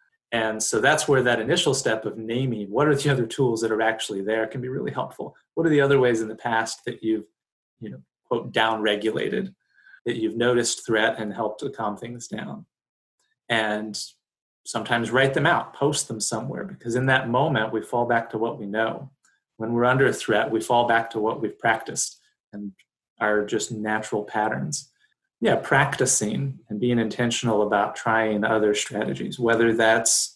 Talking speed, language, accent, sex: 185 wpm, English, American, male